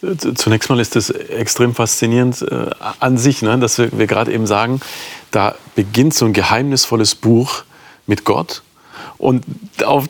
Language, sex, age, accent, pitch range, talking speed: German, male, 40-59, German, 110-140 Hz, 135 wpm